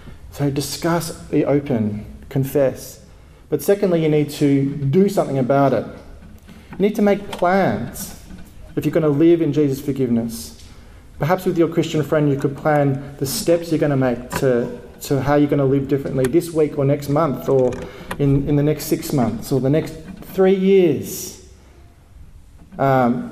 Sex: male